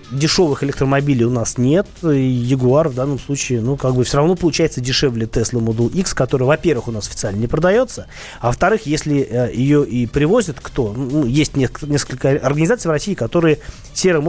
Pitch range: 120-155 Hz